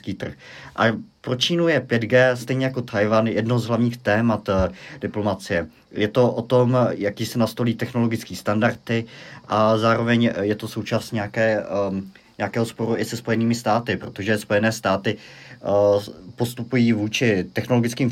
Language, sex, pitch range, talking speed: Czech, male, 105-115 Hz, 135 wpm